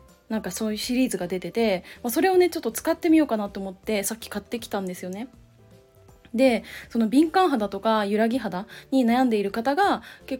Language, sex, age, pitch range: Japanese, female, 20-39, 205-275 Hz